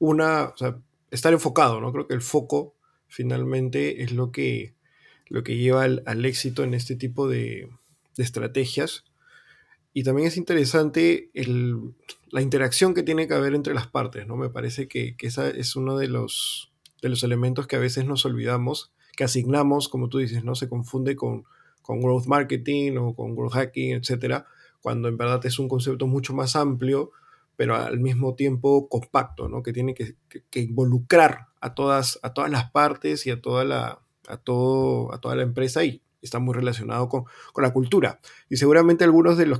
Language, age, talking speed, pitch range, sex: Spanish, 20-39, 190 wpm, 125-145 Hz, male